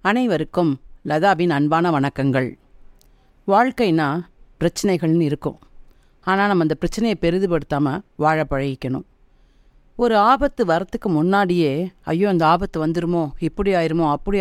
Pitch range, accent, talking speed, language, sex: 140-190 Hz, native, 105 wpm, Tamil, female